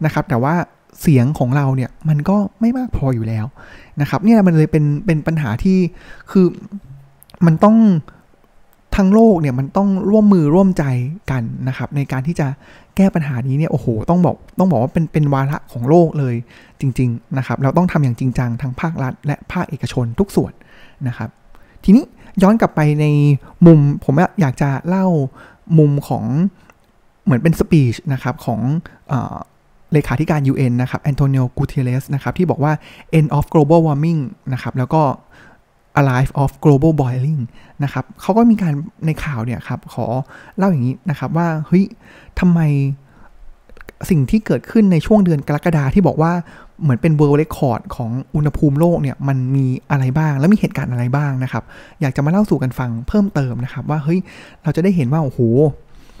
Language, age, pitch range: Thai, 20-39, 130-170 Hz